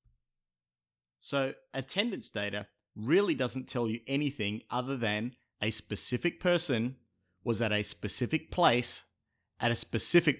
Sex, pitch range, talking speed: male, 110-145 Hz, 120 wpm